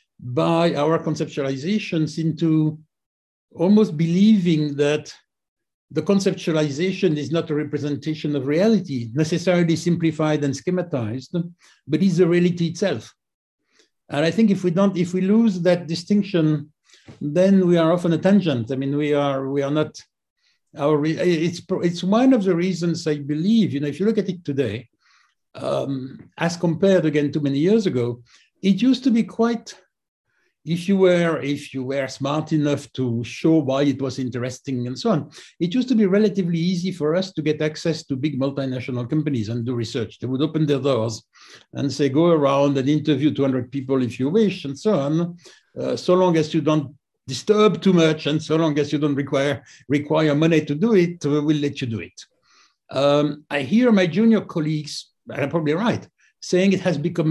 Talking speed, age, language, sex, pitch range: 180 wpm, 60-79, English, male, 140-180 Hz